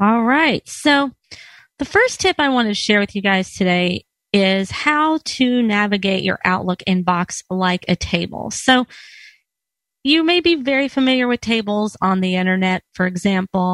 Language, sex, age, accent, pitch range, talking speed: English, female, 30-49, American, 190-260 Hz, 160 wpm